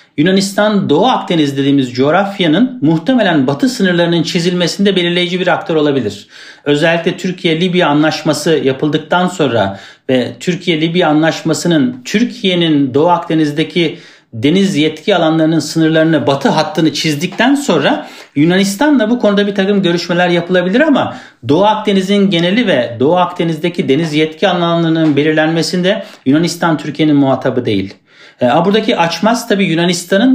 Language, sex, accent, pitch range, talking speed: Turkish, male, native, 145-190 Hz, 115 wpm